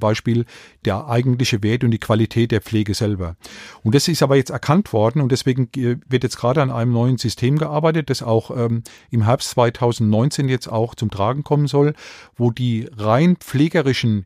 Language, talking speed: German, 180 wpm